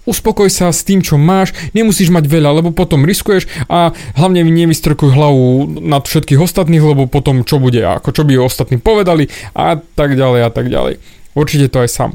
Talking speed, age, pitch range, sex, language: 190 wpm, 30-49, 135-180 Hz, male, Slovak